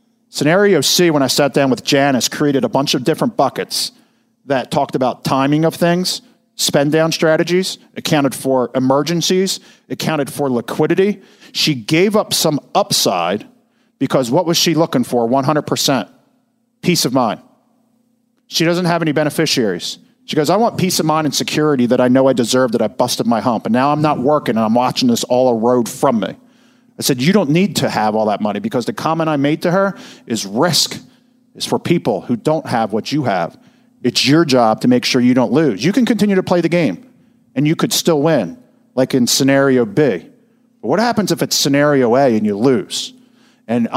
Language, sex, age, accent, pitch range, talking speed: English, male, 50-69, American, 130-210 Hz, 200 wpm